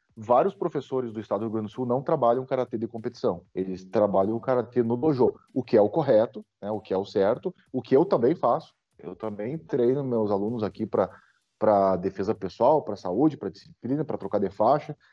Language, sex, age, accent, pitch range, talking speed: Portuguese, male, 30-49, Brazilian, 110-140 Hz, 215 wpm